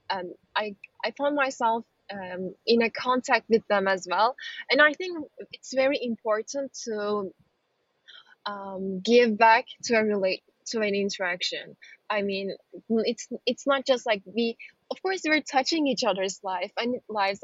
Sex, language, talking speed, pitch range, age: female, English, 160 wpm, 200-260 Hz, 20-39